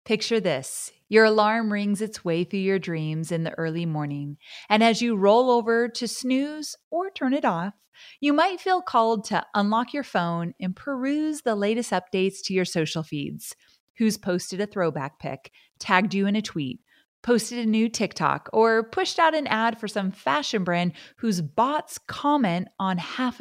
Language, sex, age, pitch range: English, female, 30-49, 175-235 Hz